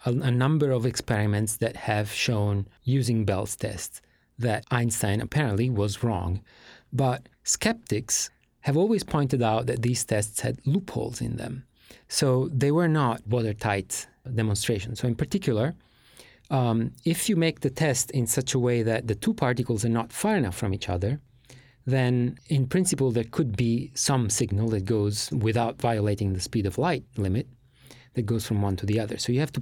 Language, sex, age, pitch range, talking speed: English, male, 40-59, 110-135 Hz, 175 wpm